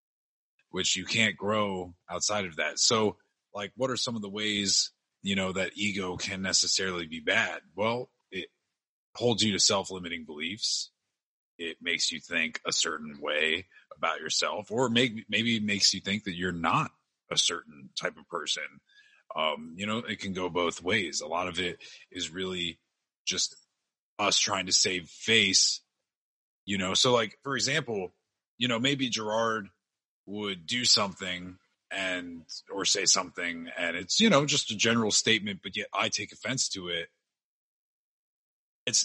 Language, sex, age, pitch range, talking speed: English, male, 30-49, 90-120 Hz, 165 wpm